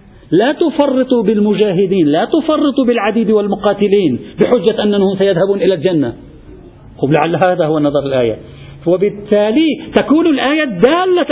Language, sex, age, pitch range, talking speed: Arabic, male, 50-69, 185-255 Hz, 115 wpm